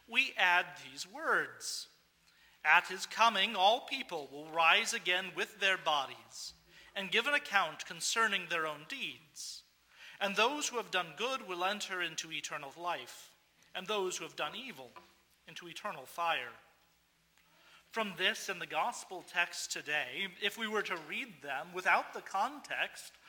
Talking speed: 150 wpm